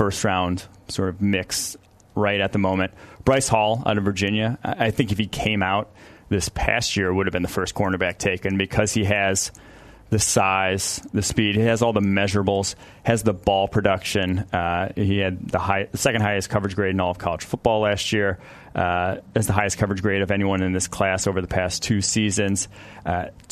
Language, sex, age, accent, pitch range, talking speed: English, male, 30-49, American, 95-110 Hz, 205 wpm